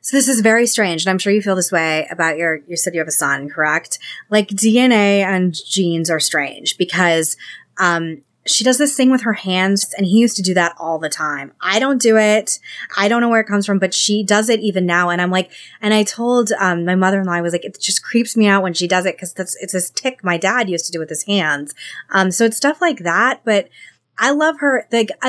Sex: female